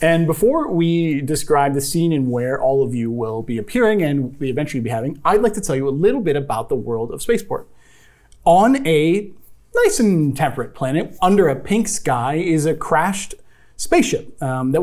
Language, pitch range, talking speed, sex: English, 140-195 Hz, 195 wpm, male